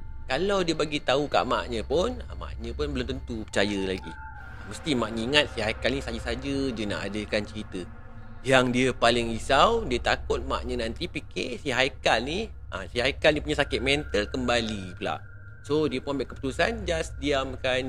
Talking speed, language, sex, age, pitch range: 175 wpm, Malay, male, 30-49, 100-130 Hz